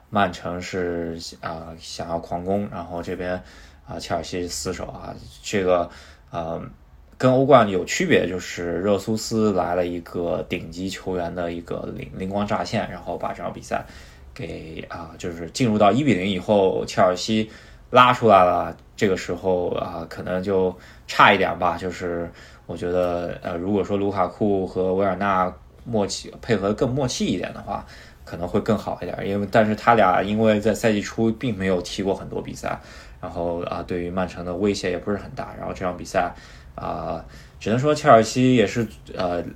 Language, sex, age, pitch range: Chinese, male, 20-39, 85-105 Hz